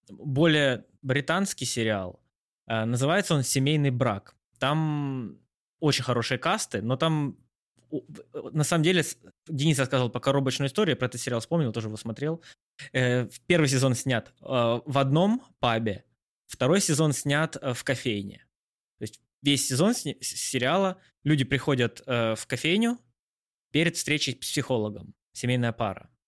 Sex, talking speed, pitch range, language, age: male, 125 wpm, 115-150 Hz, Russian, 20-39